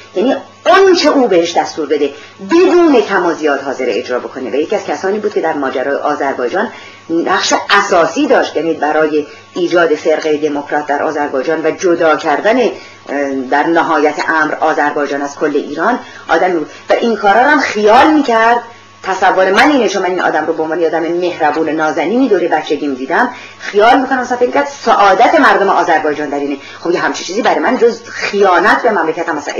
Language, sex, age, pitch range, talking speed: Persian, female, 40-59, 150-225 Hz, 170 wpm